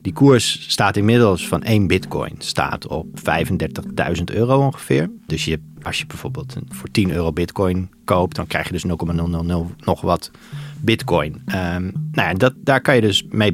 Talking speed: 175 wpm